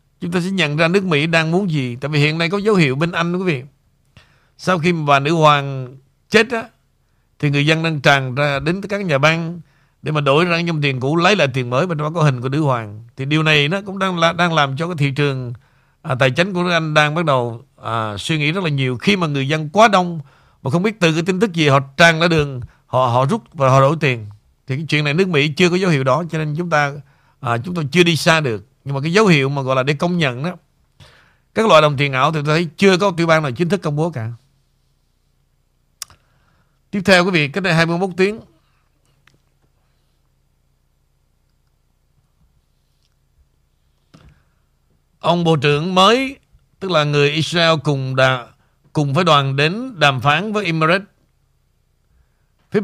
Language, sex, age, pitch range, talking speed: Vietnamese, male, 60-79, 135-175 Hz, 215 wpm